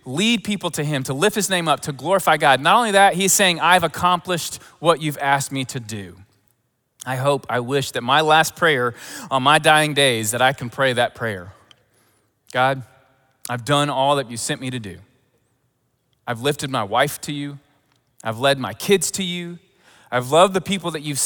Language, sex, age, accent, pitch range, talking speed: English, male, 30-49, American, 115-150 Hz, 200 wpm